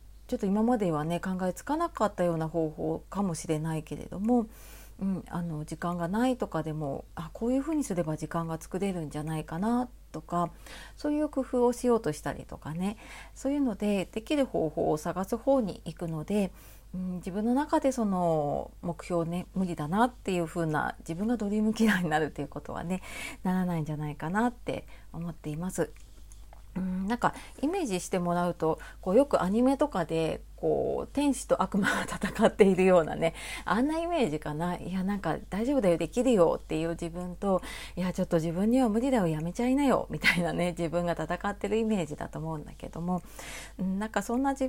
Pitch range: 165-235 Hz